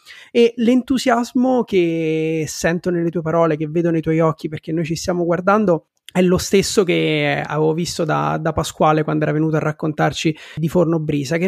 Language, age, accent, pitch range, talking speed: Italian, 30-49, native, 160-185 Hz, 185 wpm